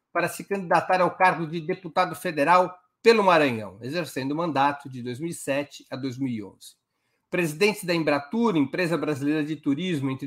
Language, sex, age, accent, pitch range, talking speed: Portuguese, male, 60-79, Brazilian, 145-185 Hz, 145 wpm